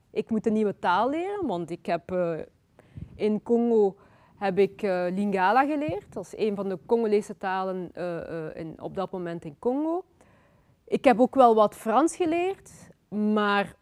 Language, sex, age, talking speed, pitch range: Dutch, female, 30-49, 170 wpm, 195-270 Hz